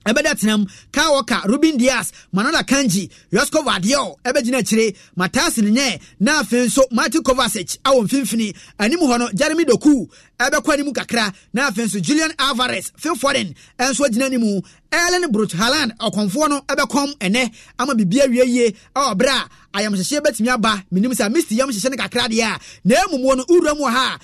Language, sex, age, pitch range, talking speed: English, male, 30-49, 205-265 Hz, 135 wpm